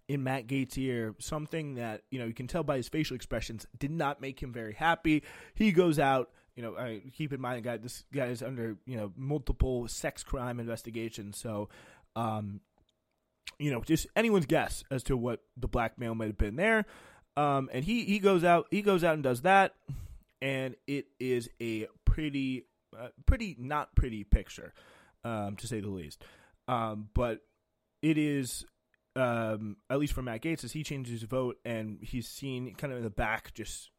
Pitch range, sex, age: 110-135 Hz, male, 20-39